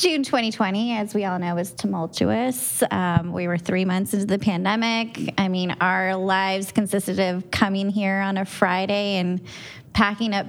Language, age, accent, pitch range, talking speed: English, 20-39, American, 185-215 Hz, 170 wpm